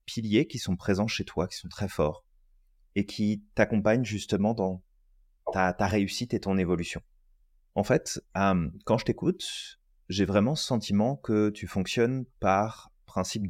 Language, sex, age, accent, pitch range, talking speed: French, male, 30-49, French, 90-110 Hz, 160 wpm